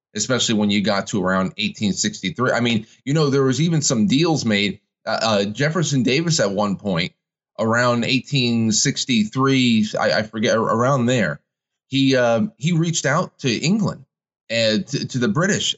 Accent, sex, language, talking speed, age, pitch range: American, male, English, 165 wpm, 30-49, 115-145 Hz